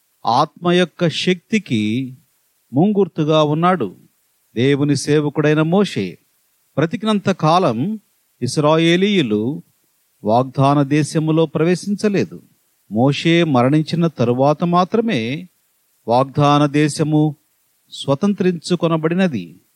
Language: Telugu